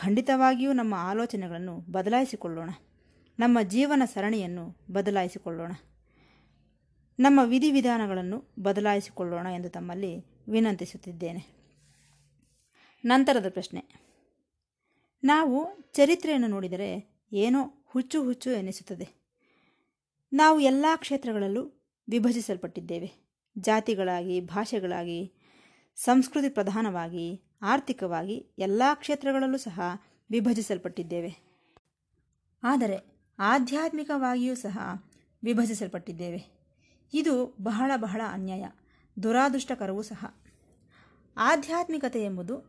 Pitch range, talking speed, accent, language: 185-260 Hz, 65 wpm, native, Kannada